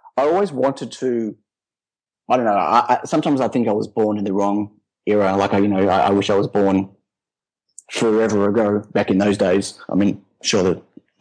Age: 30-49